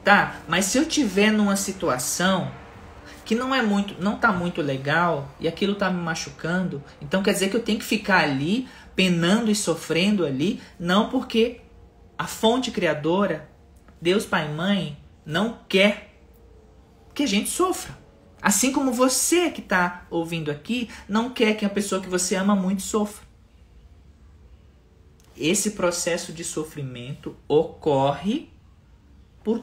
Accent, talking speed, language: Brazilian, 145 wpm, Portuguese